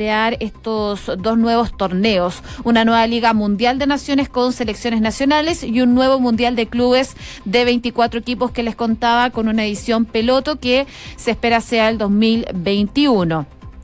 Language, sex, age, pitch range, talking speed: Spanish, female, 30-49, 220-265 Hz, 155 wpm